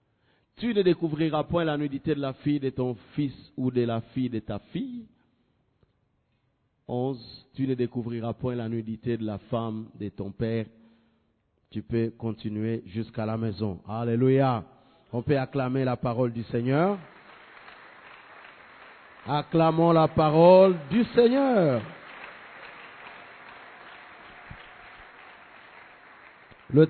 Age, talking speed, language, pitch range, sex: 50-69, 110 wpm, English, 120-165 Hz, male